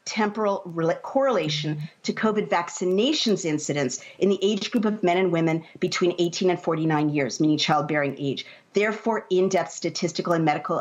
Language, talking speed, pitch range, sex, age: English, 150 wpm, 160-210 Hz, female, 50-69